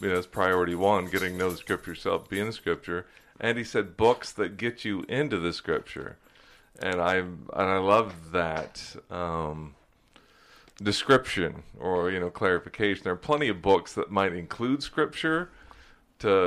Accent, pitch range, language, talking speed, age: American, 90-105 Hz, English, 170 wpm, 40-59